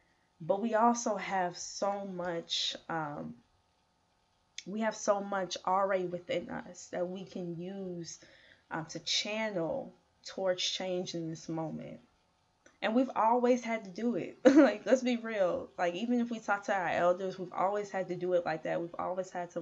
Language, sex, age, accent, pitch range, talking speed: English, female, 20-39, American, 165-190 Hz, 175 wpm